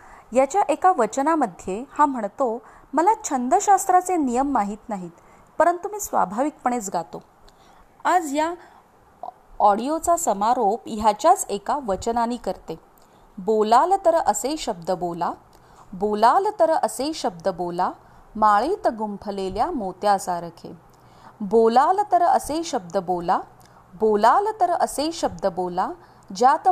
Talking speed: 105 wpm